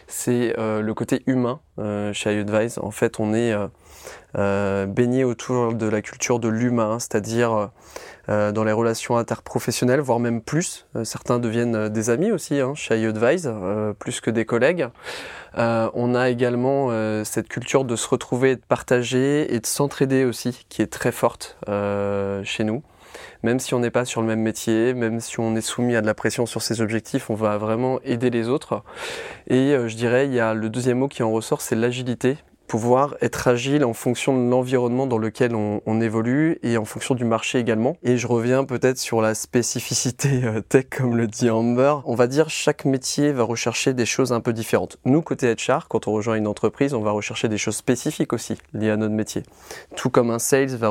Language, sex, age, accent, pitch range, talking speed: French, male, 20-39, French, 110-125 Hz, 200 wpm